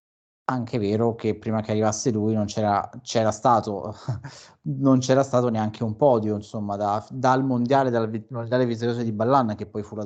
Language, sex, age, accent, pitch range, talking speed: Italian, male, 30-49, native, 110-130 Hz, 185 wpm